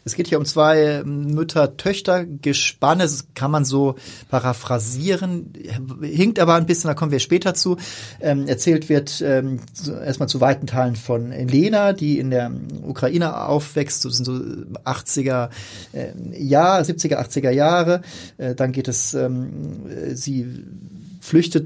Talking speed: 140 wpm